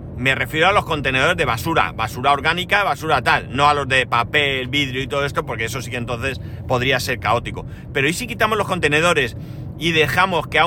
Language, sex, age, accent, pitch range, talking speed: Spanish, male, 40-59, Spanish, 135-170 Hz, 215 wpm